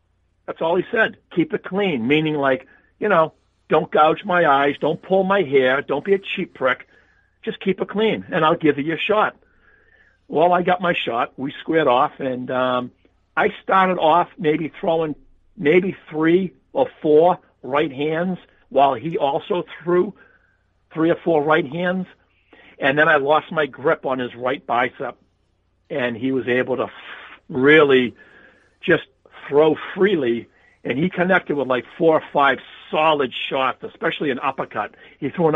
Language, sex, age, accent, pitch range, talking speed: English, male, 50-69, American, 125-170 Hz, 165 wpm